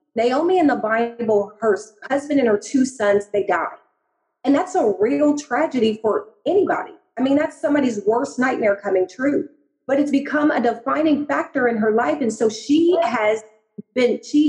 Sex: female